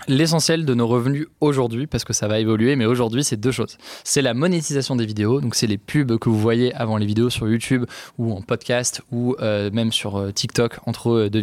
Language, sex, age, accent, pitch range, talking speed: French, male, 20-39, French, 115-135 Hz, 225 wpm